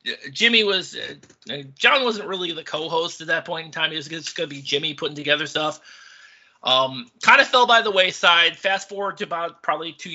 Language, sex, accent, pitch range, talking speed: English, male, American, 145-210 Hz, 200 wpm